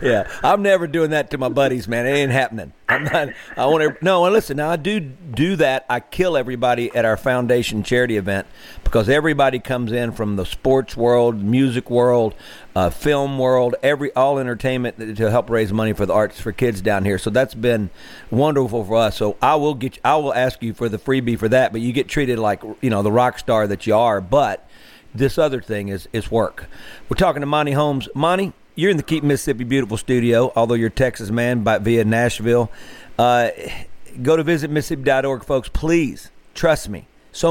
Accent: American